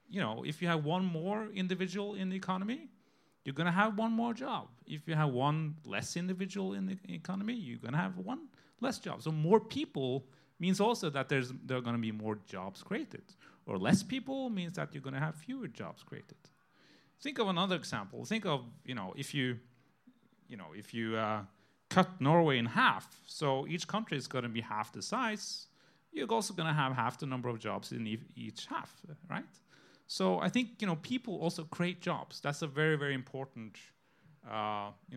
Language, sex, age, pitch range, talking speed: English, male, 30-49, 125-195 Hz, 205 wpm